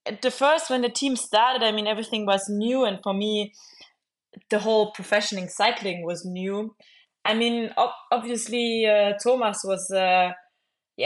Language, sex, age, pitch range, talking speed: English, female, 20-39, 185-220 Hz, 155 wpm